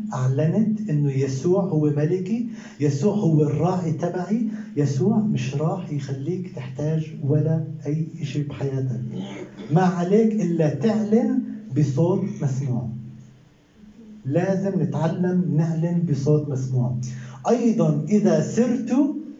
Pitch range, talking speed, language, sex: 145-220 Hz, 100 wpm, Arabic, male